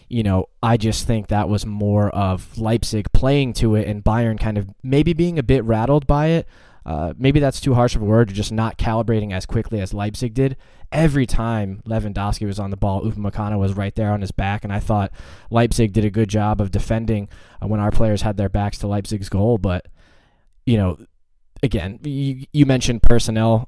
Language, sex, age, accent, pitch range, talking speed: English, male, 20-39, American, 100-115 Hz, 205 wpm